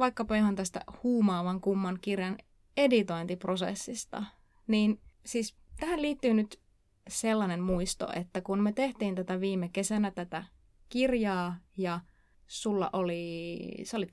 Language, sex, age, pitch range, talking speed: Finnish, female, 20-39, 185-225 Hz, 115 wpm